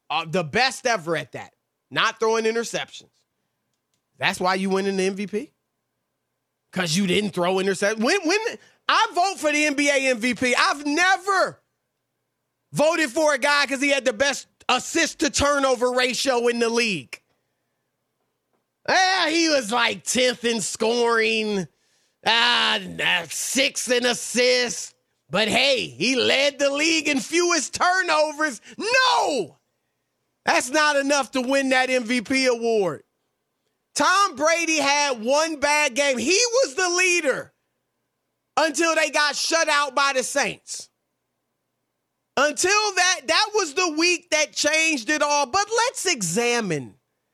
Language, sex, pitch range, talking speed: English, male, 210-310 Hz, 135 wpm